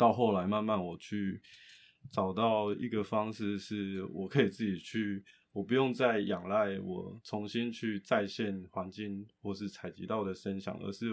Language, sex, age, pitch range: Chinese, male, 20-39, 95-120 Hz